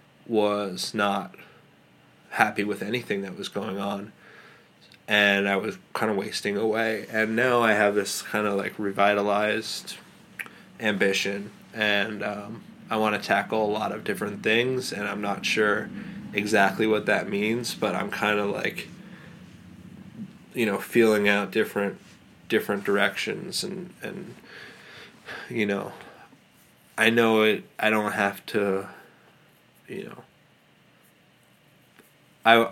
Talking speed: 130 wpm